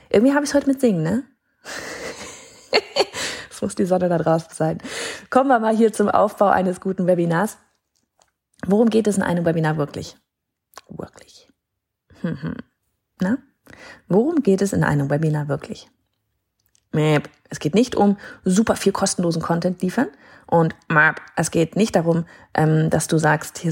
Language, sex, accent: German, female, German